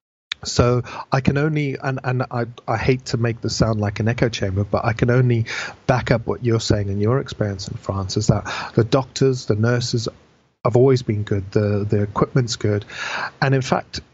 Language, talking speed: English, 205 wpm